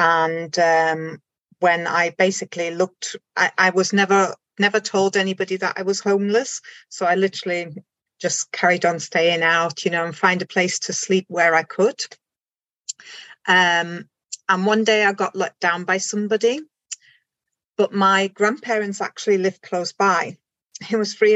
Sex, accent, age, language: female, British, 30-49, English